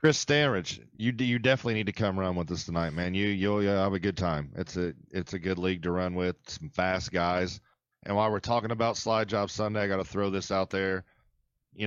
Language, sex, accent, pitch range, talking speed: English, male, American, 95-120 Hz, 245 wpm